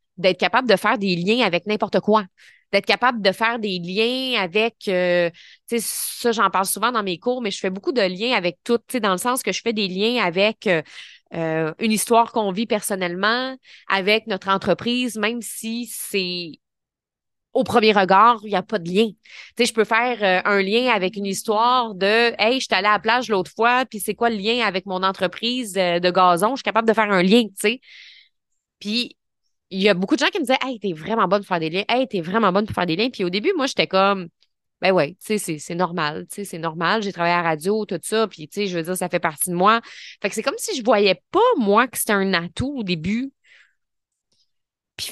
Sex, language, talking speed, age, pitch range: female, French, 245 wpm, 20-39, 185-235 Hz